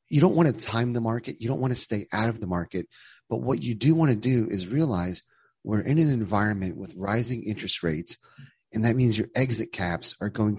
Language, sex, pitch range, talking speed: English, male, 90-115 Hz, 230 wpm